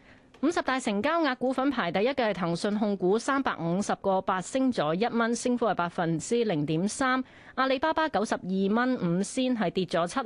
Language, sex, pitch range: Chinese, female, 180-255 Hz